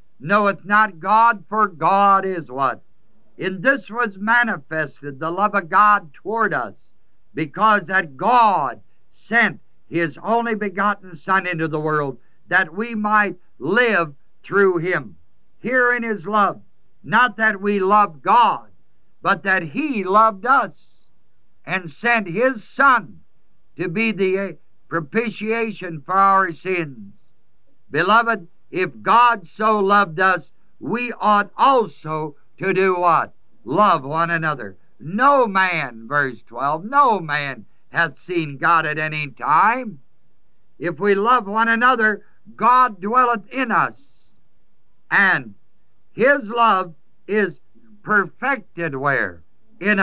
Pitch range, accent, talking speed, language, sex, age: 160-220 Hz, American, 120 wpm, English, male, 60-79